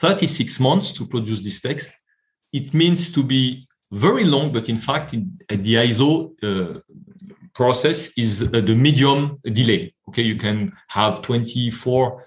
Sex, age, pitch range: male, 40-59, 115-145 Hz